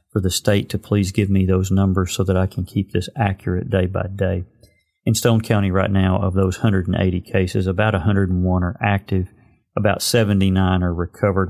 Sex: male